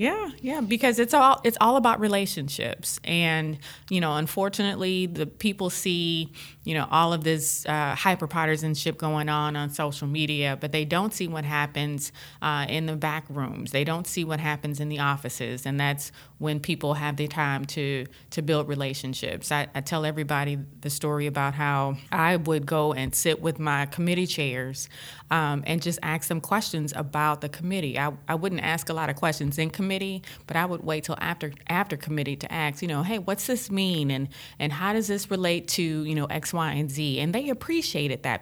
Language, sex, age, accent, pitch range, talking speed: English, female, 30-49, American, 145-170 Hz, 200 wpm